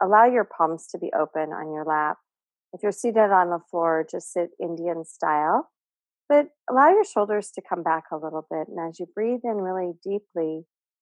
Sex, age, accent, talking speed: female, 40-59, American, 195 wpm